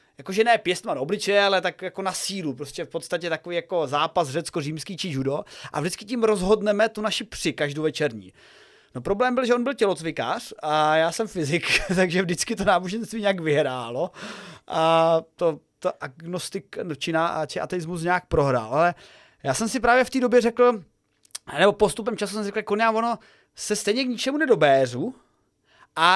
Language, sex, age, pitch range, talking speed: Czech, male, 30-49, 165-235 Hz, 175 wpm